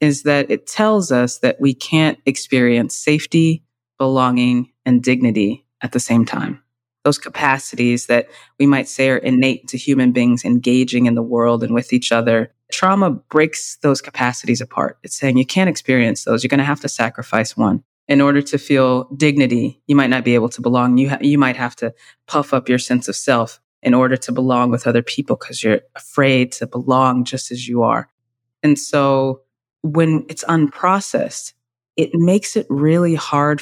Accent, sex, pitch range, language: American, female, 125-150 Hz, English